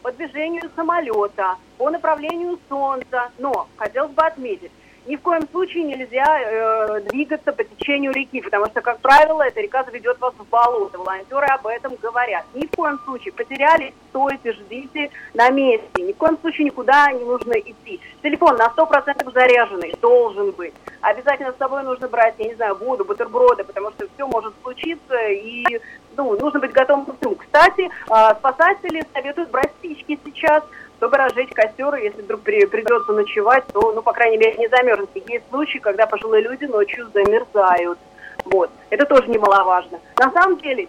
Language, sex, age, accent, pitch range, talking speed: Russian, female, 30-49, native, 225-310 Hz, 165 wpm